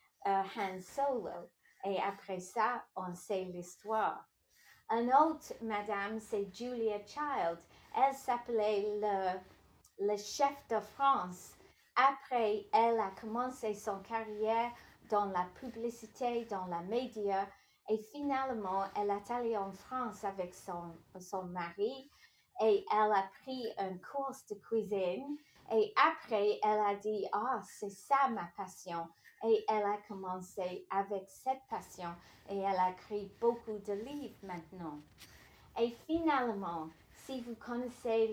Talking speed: 130 wpm